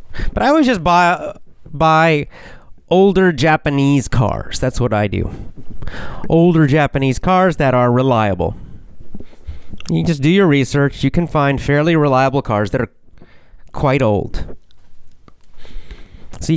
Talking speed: 125 wpm